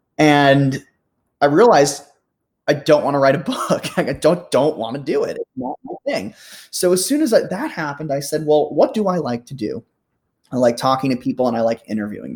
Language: English